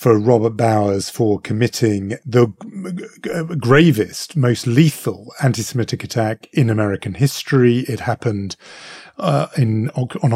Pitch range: 110-140 Hz